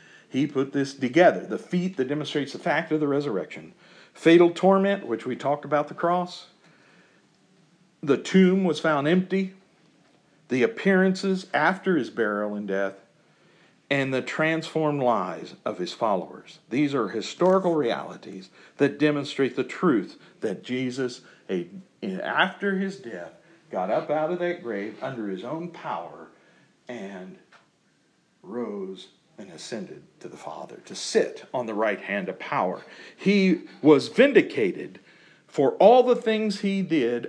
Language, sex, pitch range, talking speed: English, male, 140-190 Hz, 140 wpm